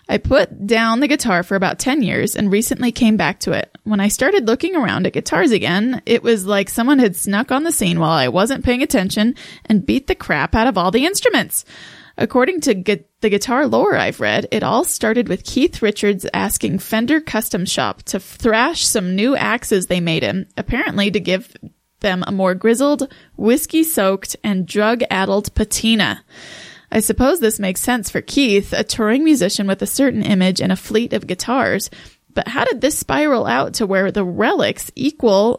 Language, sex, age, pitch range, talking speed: English, female, 20-39, 195-265 Hz, 190 wpm